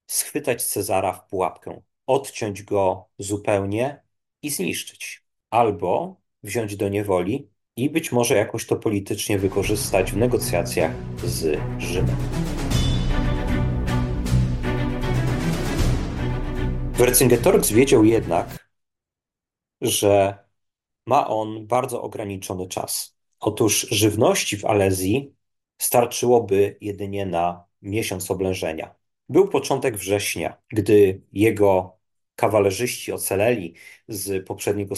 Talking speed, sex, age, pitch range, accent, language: 85 wpm, male, 30-49, 95-115 Hz, native, Polish